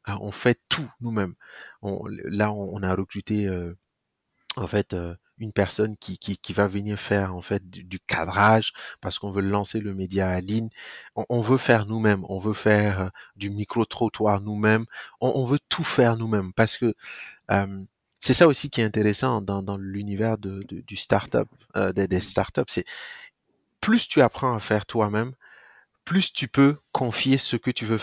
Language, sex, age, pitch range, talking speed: French, male, 30-49, 100-120 Hz, 190 wpm